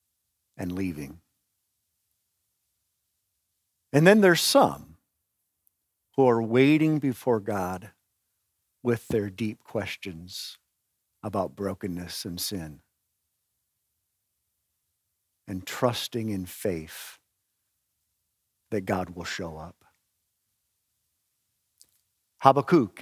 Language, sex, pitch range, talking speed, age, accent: English, male, 95-135 Hz, 75 wpm, 50-69, American